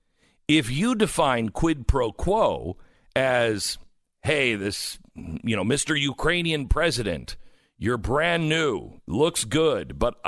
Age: 50-69